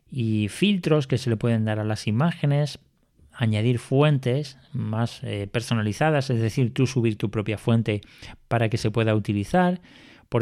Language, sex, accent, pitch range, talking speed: Spanish, male, Spanish, 115-150 Hz, 160 wpm